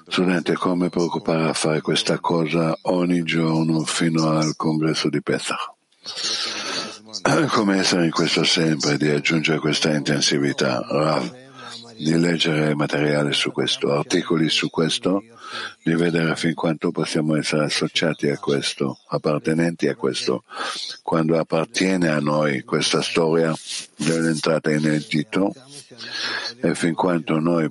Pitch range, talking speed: 75-85 Hz, 125 wpm